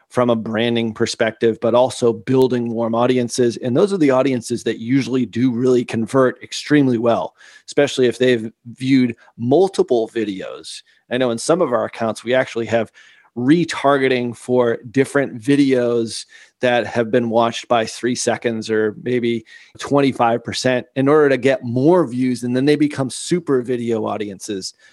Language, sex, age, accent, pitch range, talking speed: English, male, 30-49, American, 115-135 Hz, 155 wpm